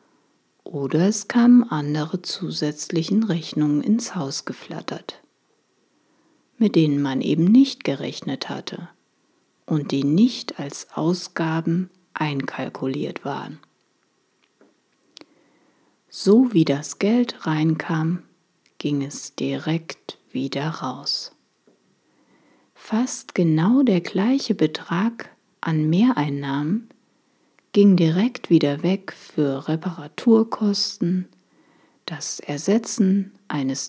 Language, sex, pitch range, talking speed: German, female, 150-215 Hz, 85 wpm